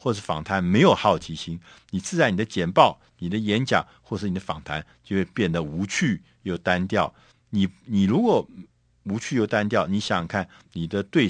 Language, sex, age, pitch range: Chinese, male, 50-69, 95-140 Hz